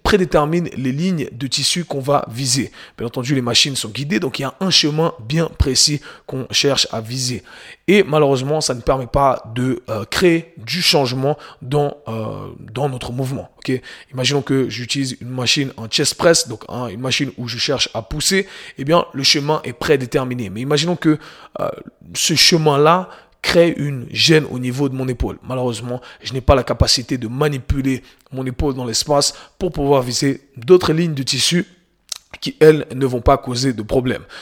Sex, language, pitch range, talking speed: male, French, 125-155 Hz, 185 wpm